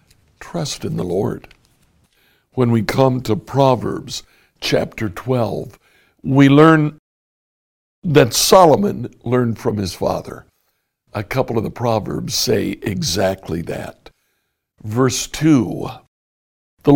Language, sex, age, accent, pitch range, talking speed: English, male, 60-79, American, 105-145 Hz, 105 wpm